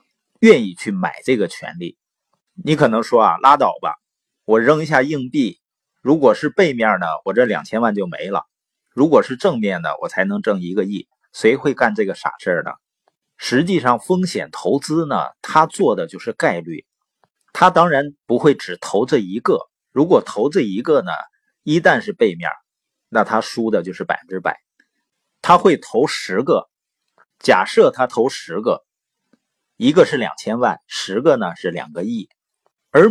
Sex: male